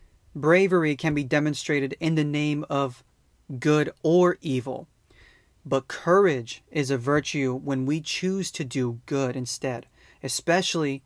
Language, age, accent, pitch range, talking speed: English, 30-49, American, 130-160 Hz, 130 wpm